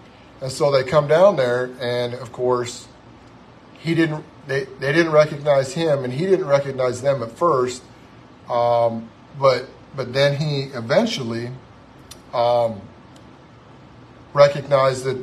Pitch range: 120-140 Hz